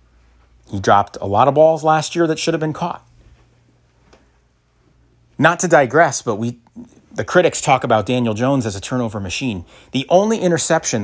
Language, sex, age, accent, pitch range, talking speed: English, male, 40-59, American, 105-155 Hz, 170 wpm